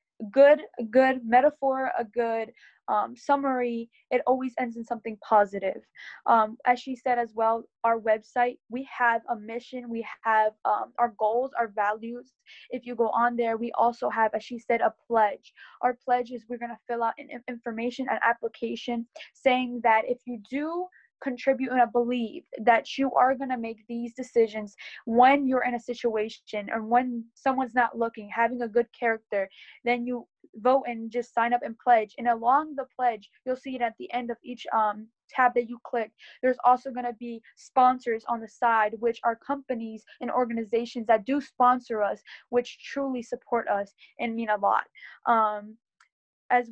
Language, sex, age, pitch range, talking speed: English, female, 10-29, 230-250 Hz, 180 wpm